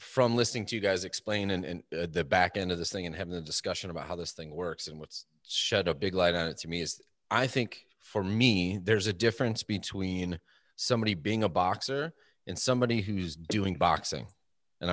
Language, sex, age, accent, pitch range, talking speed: English, male, 30-49, American, 90-115 Hz, 205 wpm